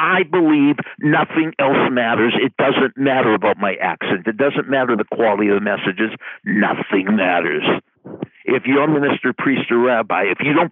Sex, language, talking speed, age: male, English, 175 wpm, 60-79